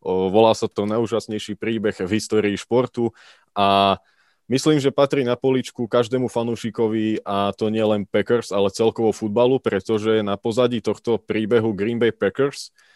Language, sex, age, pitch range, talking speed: Slovak, male, 20-39, 100-115 Hz, 150 wpm